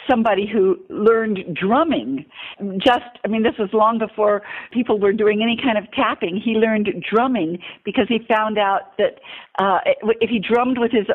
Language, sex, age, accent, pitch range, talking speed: English, female, 50-69, American, 210-275 Hz, 170 wpm